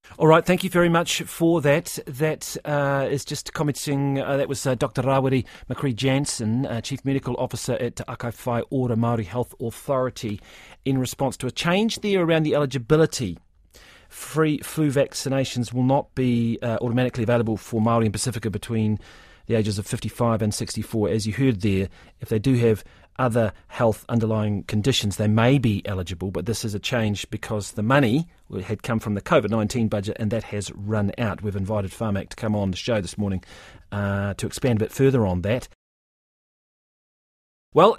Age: 40-59